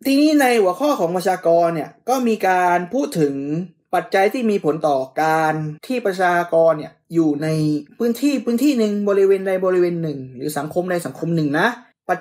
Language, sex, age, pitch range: Thai, male, 20-39, 160-235 Hz